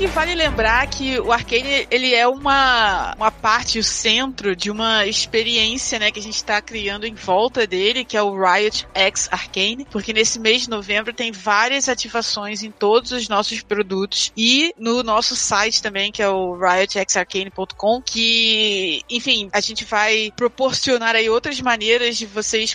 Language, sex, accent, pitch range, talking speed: Portuguese, female, Brazilian, 205-235 Hz, 165 wpm